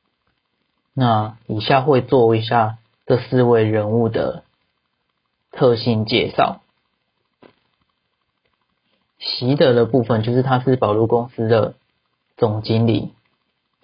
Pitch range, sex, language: 110-120 Hz, male, Chinese